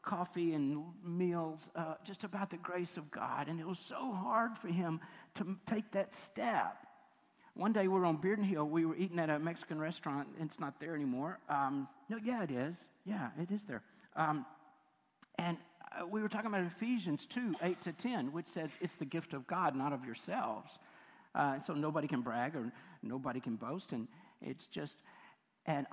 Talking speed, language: 190 wpm, English